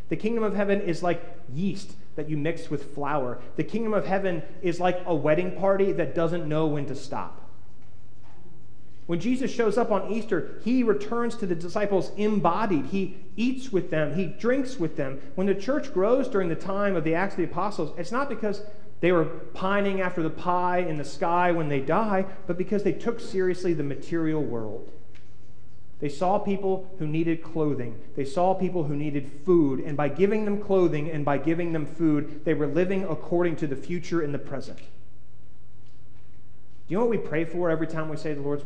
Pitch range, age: 150-195 Hz, 30-49